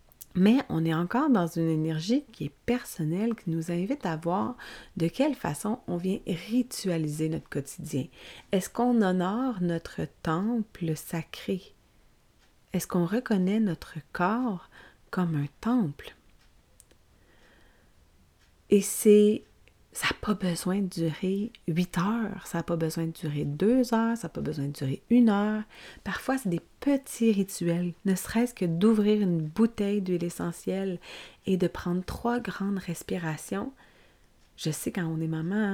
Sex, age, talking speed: female, 30-49, 150 wpm